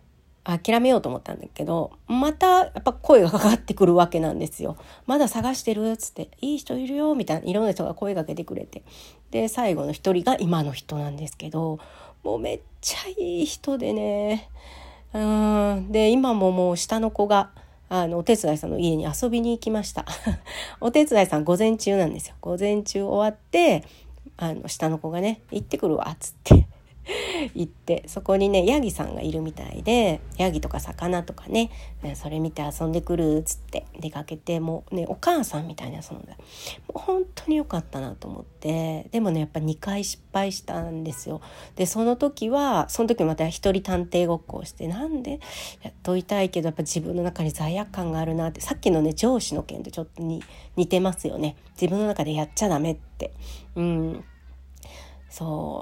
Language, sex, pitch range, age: Japanese, female, 160-220 Hz, 40-59